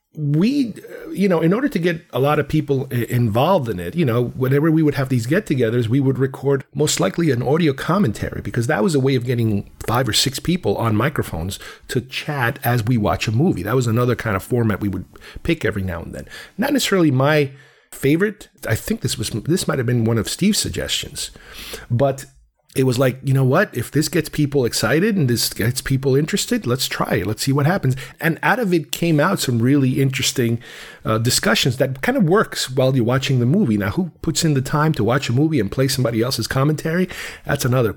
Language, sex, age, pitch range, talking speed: English, male, 40-59, 120-160 Hz, 220 wpm